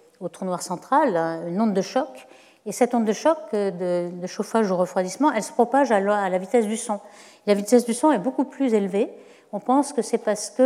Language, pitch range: French, 180-235 Hz